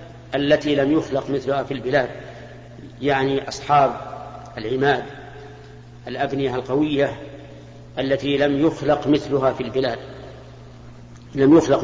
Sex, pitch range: male, 120-145 Hz